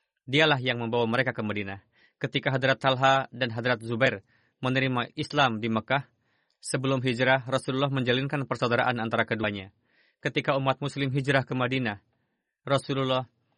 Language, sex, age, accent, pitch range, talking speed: Indonesian, male, 30-49, native, 115-135 Hz, 135 wpm